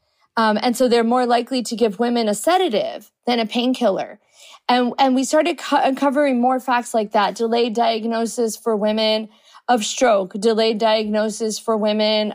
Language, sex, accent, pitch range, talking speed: German, female, American, 220-260 Hz, 165 wpm